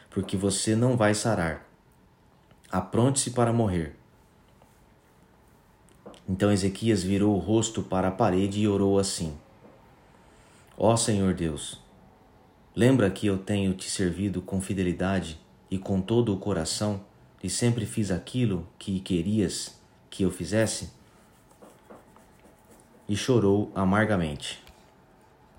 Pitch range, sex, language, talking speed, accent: 95-110 Hz, male, Portuguese, 110 wpm, Brazilian